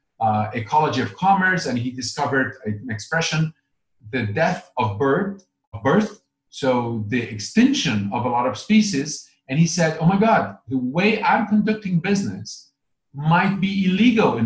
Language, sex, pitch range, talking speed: Hebrew, male, 120-185 Hz, 160 wpm